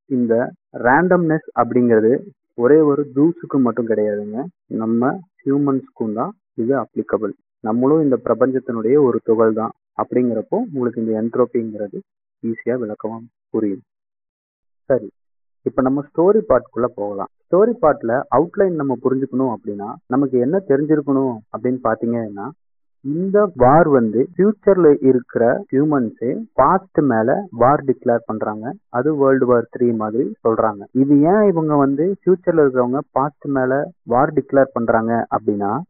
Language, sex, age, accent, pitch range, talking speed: Tamil, male, 30-49, native, 115-150 Hz, 115 wpm